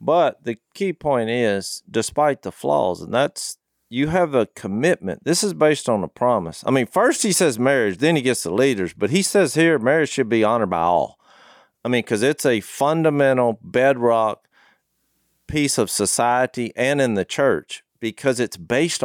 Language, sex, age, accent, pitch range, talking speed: English, male, 40-59, American, 95-135 Hz, 185 wpm